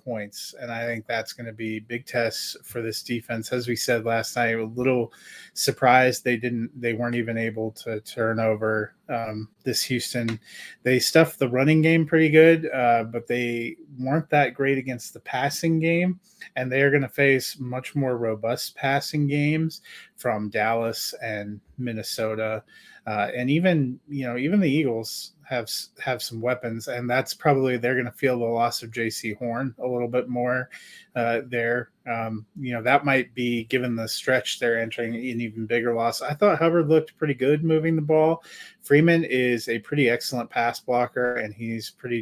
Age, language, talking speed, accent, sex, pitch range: 30-49, English, 185 wpm, American, male, 115-135 Hz